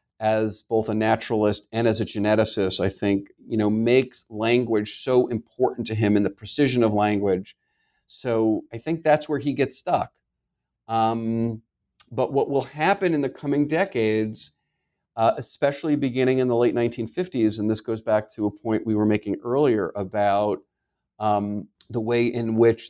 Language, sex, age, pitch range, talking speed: English, male, 40-59, 105-125 Hz, 170 wpm